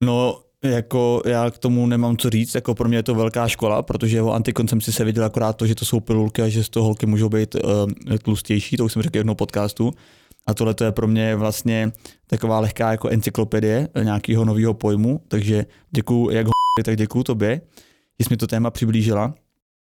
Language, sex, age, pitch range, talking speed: Czech, male, 20-39, 110-125 Hz, 210 wpm